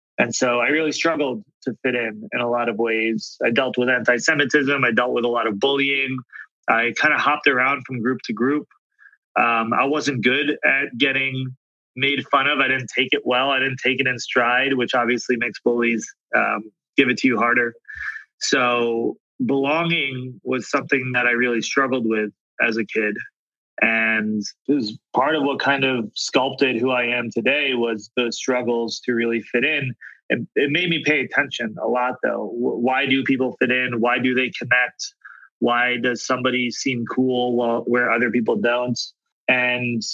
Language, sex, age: English, male, 30-49